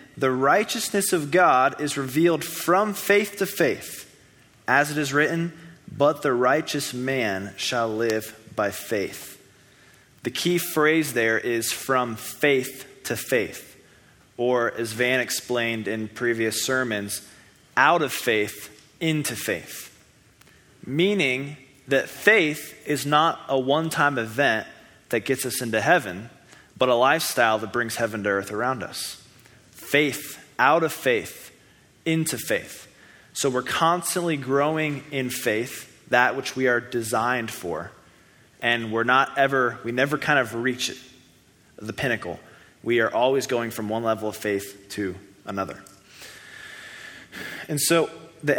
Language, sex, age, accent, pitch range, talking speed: English, male, 20-39, American, 115-150 Hz, 135 wpm